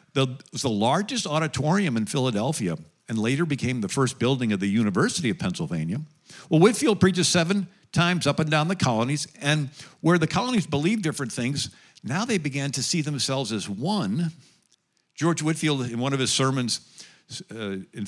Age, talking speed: 50-69, 175 wpm